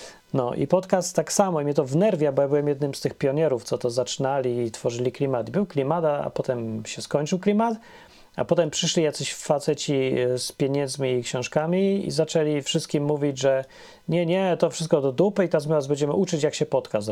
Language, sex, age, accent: Polish, male, 30-49, native